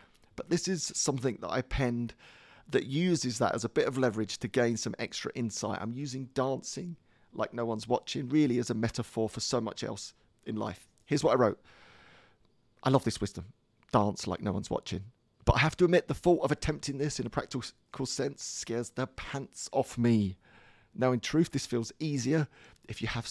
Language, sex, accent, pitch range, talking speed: English, male, British, 115-155 Hz, 200 wpm